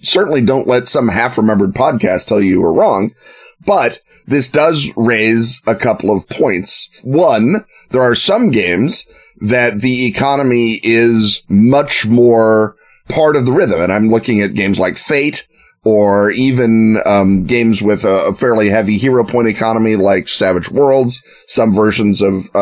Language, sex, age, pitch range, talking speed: English, male, 30-49, 105-130 Hz, 155 wpm